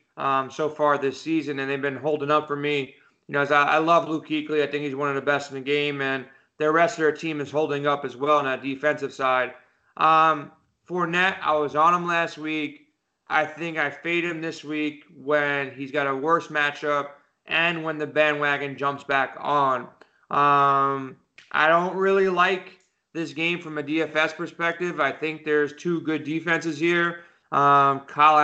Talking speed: 200 wpm